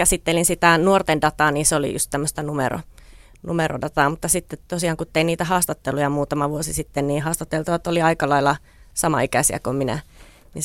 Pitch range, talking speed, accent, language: 145-165 Hz, 170 wpm, native, Finnish